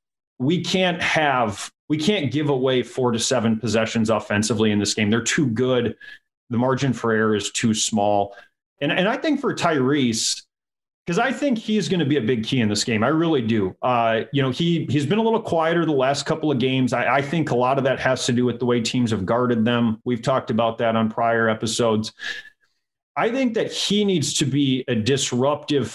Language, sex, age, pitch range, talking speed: English, male, 30-49, 115-155 Hz, 215 wpm